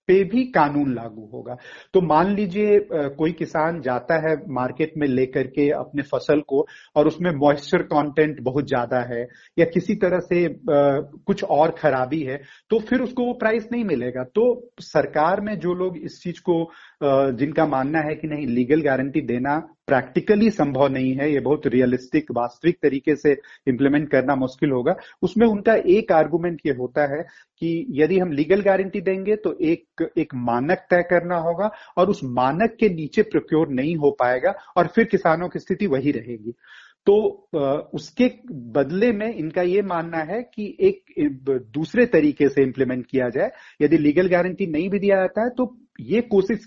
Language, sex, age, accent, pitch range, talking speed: Hindi, male, 40-59, native, 140-200 Hz, 175 wpm